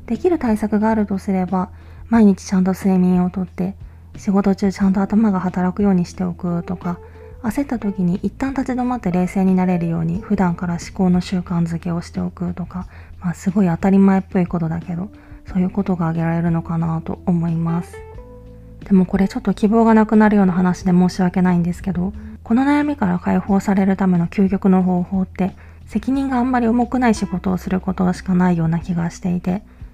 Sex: female